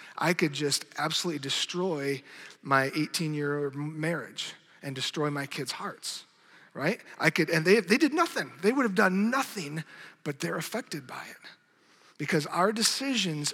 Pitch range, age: 155-195 Hz, 40-59